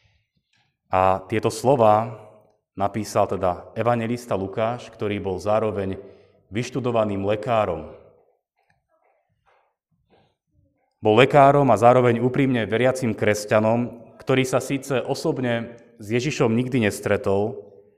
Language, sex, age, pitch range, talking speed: Slovak, male, 30-49, 105-130 Hz, 90 wpm